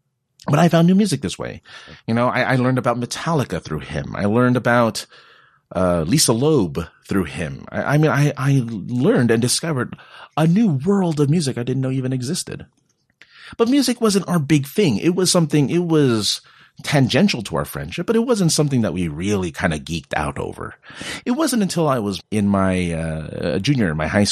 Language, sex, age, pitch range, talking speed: English, male, 30-49, 100-165 Hz, 200 wpm